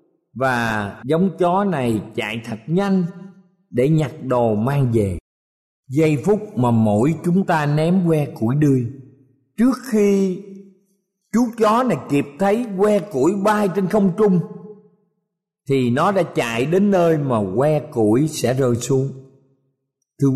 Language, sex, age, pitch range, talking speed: Vietnamese, male, 50-69, 135-200 Hz, 140 wpm